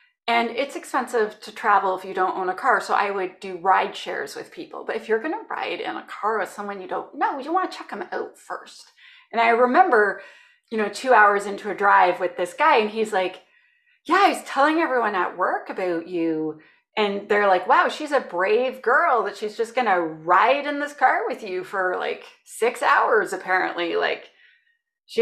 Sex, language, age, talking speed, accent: female, English, 30-49, 210 wpm, American